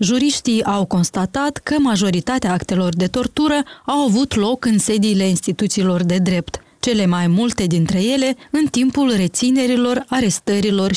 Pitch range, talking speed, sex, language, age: 190-250 Hz, 135 wpm, female, Romanian, 20-39